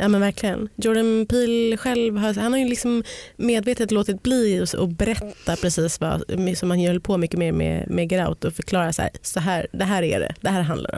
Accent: native